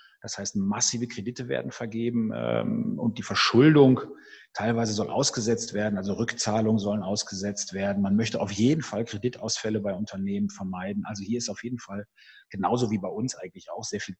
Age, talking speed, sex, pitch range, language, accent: 40-59, 180 wpm, male, 100-125 Hz, German, German